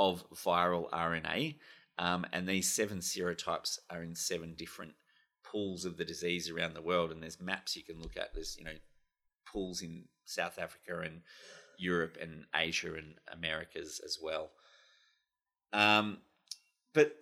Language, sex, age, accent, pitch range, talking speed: English, male, 30-49, Australian, 85-125 Hz, 150 wpm